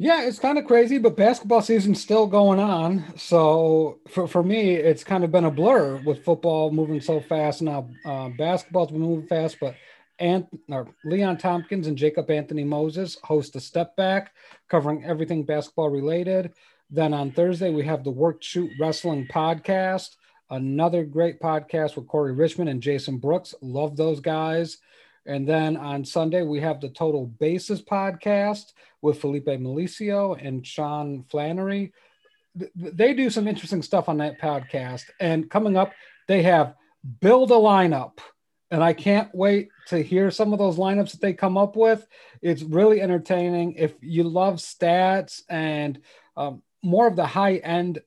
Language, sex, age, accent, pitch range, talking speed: English, male, 40-59, American, 150-195 Hz, 165 wpm